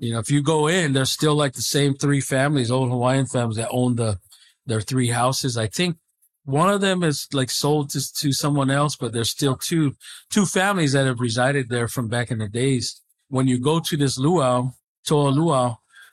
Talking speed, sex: 210 wpm, male